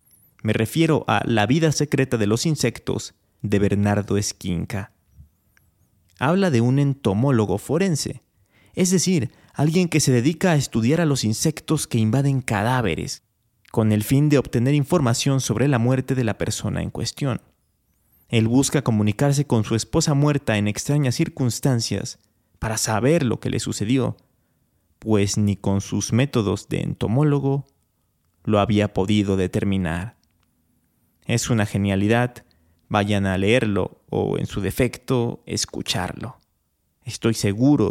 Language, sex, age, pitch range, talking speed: Spanish, male, 30-49, 105-140 Hz, 135 wpm